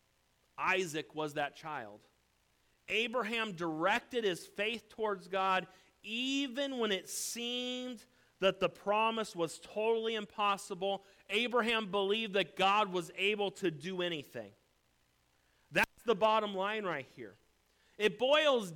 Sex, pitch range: male, 185-245 Hz